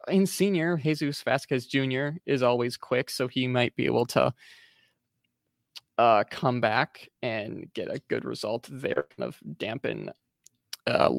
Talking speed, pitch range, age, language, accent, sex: 145 wpm, 120-135 Hz, 20-39, English, American, male